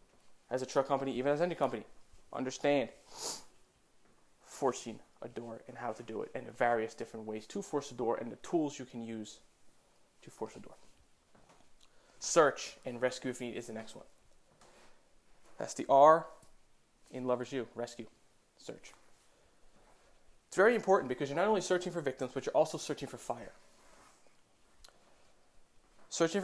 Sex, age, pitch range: male, 20-39, 125-150 Hz